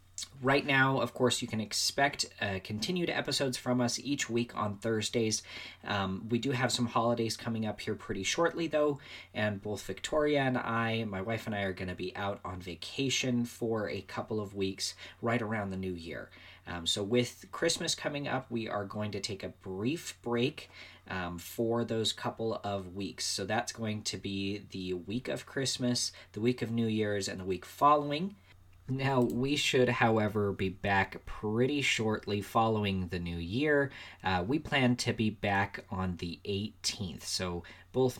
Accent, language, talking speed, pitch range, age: American, English, 180 wpm, 95-125 Hz, 40-59